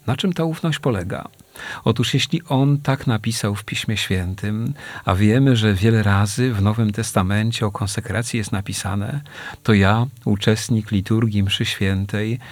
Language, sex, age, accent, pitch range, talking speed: Polish, male, 40-59, native, 100-125 Hz, 150 wpm